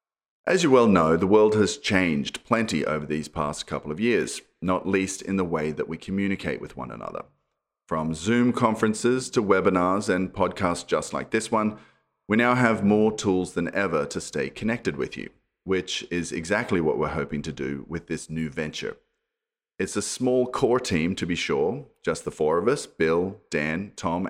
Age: 30-49